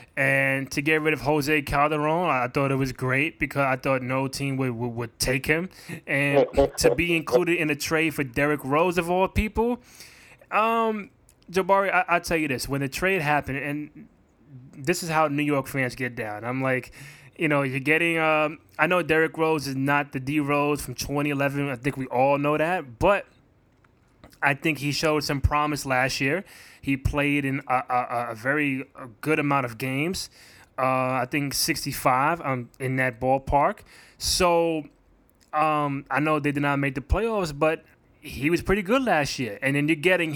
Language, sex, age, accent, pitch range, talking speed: English, male, 20-39, American, 135-155 Hz, 185 wpm